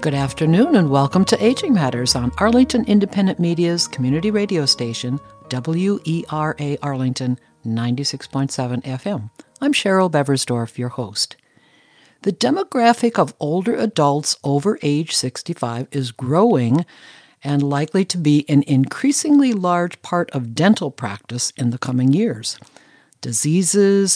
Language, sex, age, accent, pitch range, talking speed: English, female, 60-79, American, 130-195 Hz, 120 wpm